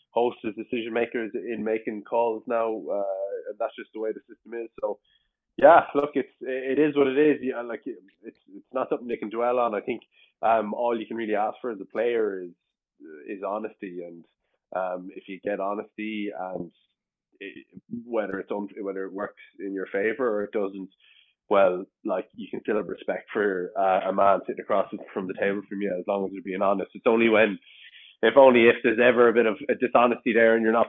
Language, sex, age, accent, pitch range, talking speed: English, male, 20-39, Irish, 100-120 Hz, 220 wpm